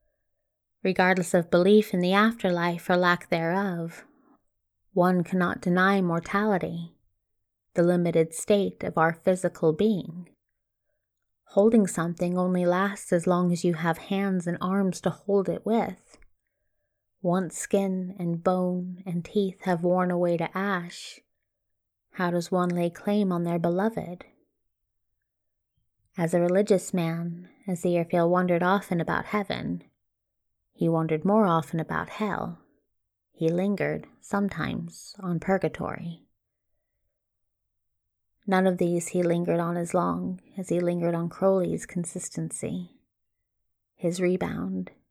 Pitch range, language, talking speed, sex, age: 110-185 Hz, English, 120 wpm, female, 20-39